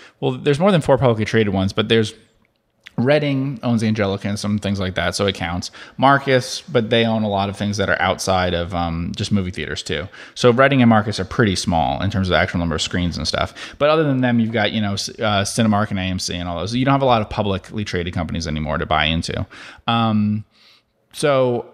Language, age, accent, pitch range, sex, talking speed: English, 30-49, American, 95-120 Hz, male, 235 wpm